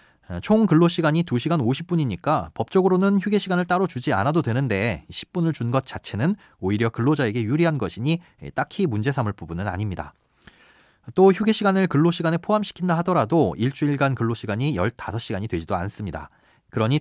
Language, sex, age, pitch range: Korean, male, 30-49, 115-175 Hz